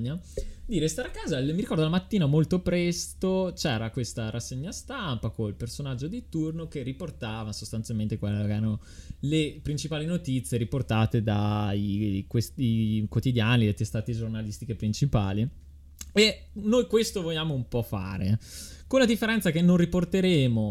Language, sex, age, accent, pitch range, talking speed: Italian, male, 20-39, native, 110-155 Hz, 145 wpm